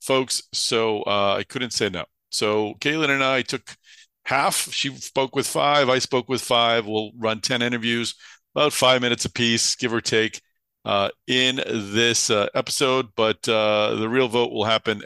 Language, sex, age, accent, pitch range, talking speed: English, male, 50-69, American, 105-125 Hz, 175 wpm